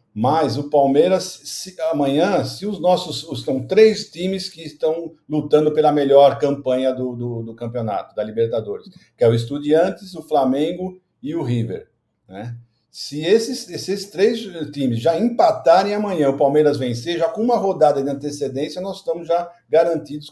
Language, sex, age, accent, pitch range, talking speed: Portuguese, male, 50-69, Brazilian, 120-155 Hz, 160 wpm